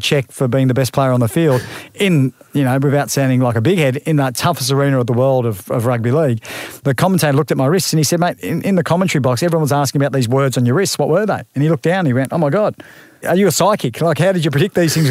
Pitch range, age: 130-160 Hz, 40-59